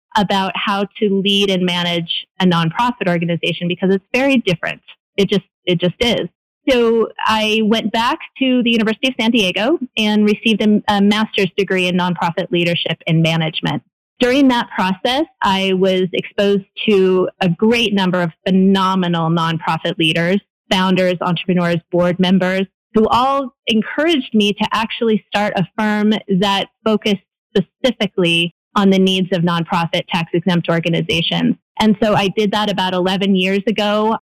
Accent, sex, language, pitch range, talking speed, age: American, female, English, 180-225 Hz, 150 wpm, 30-49